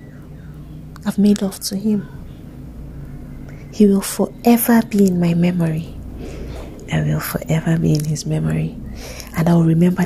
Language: English